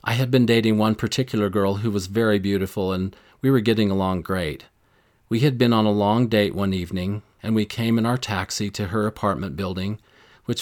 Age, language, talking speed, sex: 40-59, English, 210 wpm, male